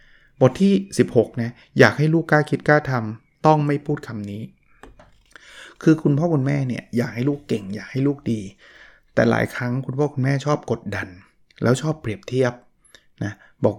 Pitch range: 115-145 Hz